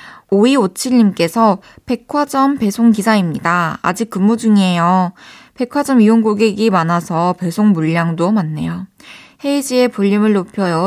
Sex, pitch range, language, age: female, 185-235 Hz, Korean, 20-39